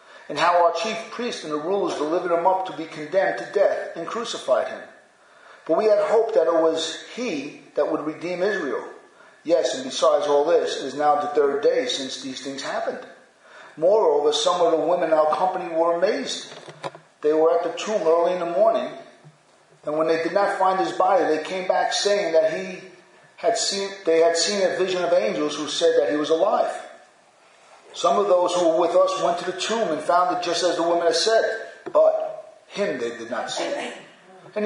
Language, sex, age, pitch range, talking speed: English, male, 40-59, 155-205 Hz, 210 wpm